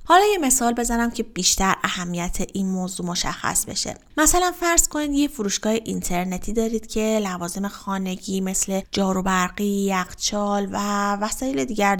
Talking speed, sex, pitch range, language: 135 wpm, female, 190-260 Hz, Persian